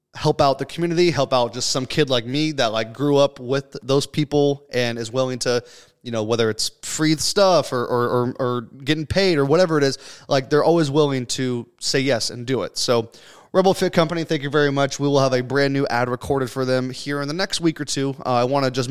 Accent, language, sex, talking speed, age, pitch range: American, English, male, 250 wpm, 20-39, 125-150 Hz